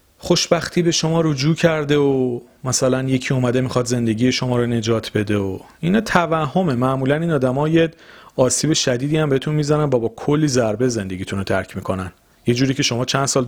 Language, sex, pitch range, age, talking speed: Persian, male, 105-135 Hz, 40-59, 185 wpm